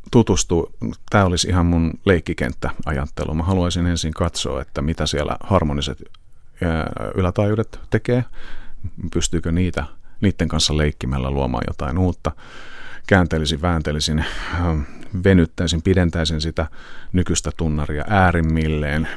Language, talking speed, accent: Finnish, 95 wpm, native